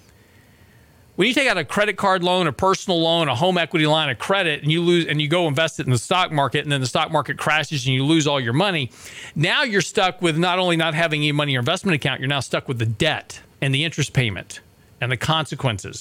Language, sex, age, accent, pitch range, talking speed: English, male, 40-59, American, 115-160 Hz, 255 wpm